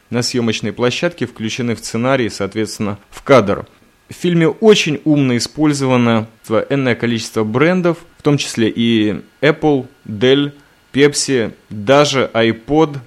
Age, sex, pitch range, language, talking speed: 20-39, male, 110-140 Hz, Russian, 120 wpm